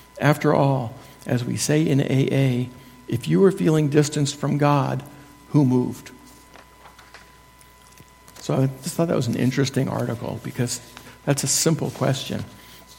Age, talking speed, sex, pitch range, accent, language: 60-79, 140 wpm, male, 125-145 Hz, American, English